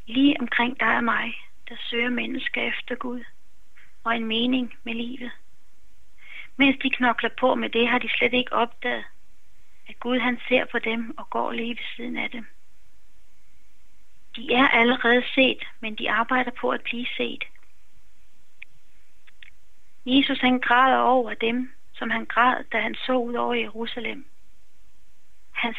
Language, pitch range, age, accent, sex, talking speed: Danish, 225-255 Hz, 30-49, native, female, 150 wpm